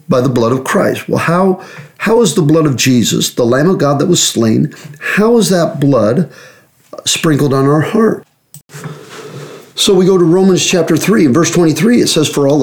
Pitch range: 130-170 Hz